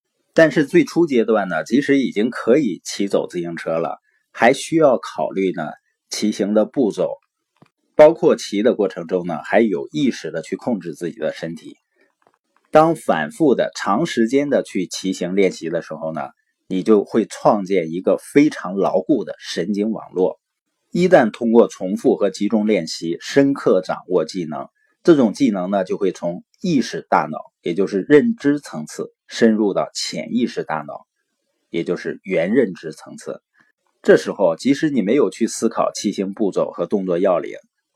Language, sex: Chinese, male